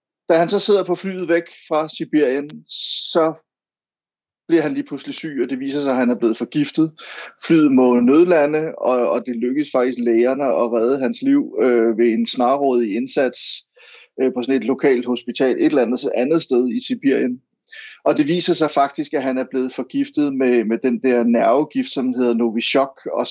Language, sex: Danish, male